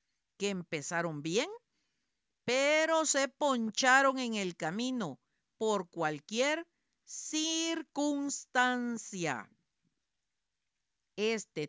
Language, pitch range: Spanish, 195-270 Hz